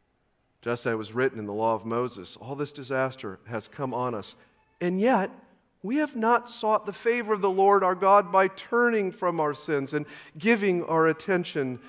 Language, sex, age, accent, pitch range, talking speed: English, male, 50-69, American, 120-155 Hz, 195 wpm